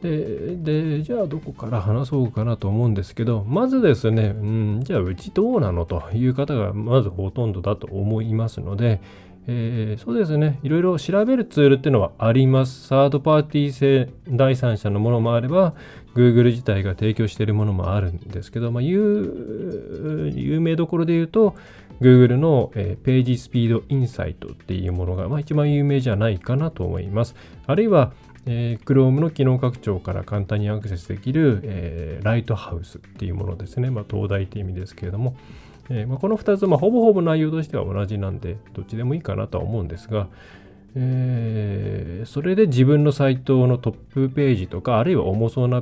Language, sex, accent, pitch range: Japanese, male, native, 100-140 Hz